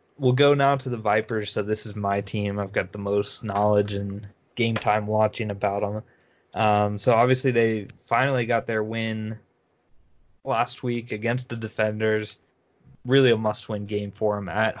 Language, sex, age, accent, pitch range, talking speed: English, male, 20-39, American, 100-115 Hz, 175 wpm